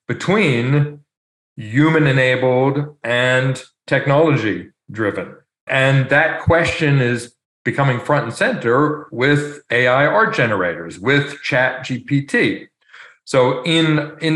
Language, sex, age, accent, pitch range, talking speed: English, male, 40-59, American, 120-150 Hz, 90 wpm